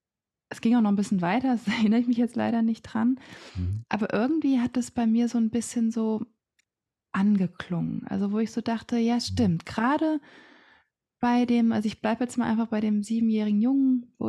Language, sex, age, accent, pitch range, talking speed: German, female, 20-39, German, 200-230 Hz, 195 wpm